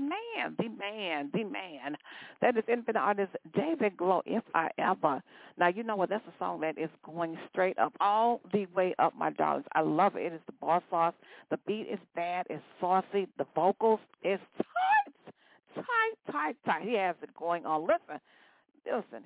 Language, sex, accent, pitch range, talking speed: English, female, American, 170-230 Hz, 185 wpm